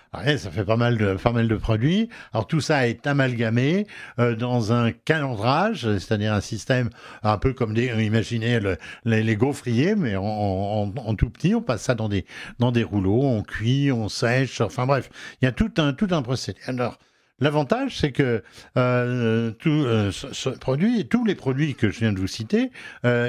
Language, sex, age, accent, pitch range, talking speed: French, male, 60-79, French, 110-145 Hz, 200 wpm